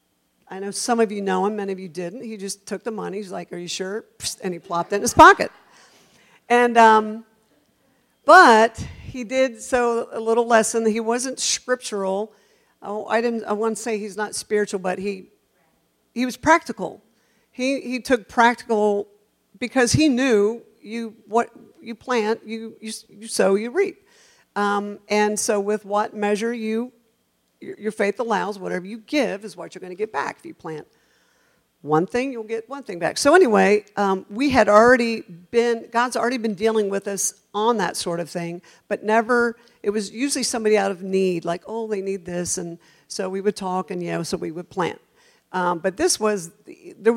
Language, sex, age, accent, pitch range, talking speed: English, female, 50-69, American, 195-235 Hz, 190 wpm